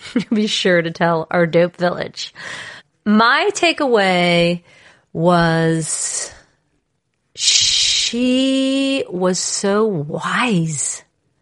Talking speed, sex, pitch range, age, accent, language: 75 wpm, female, 175-235 Hz, 40-59, American, English